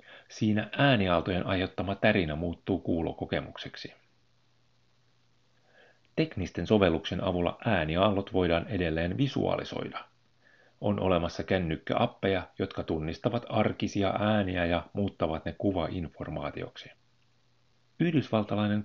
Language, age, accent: Finnish, 40-59, native